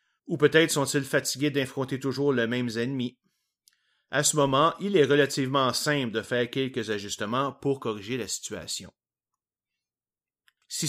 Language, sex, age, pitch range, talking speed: French, male, 30-49, 115-150 Hz, 140 wpm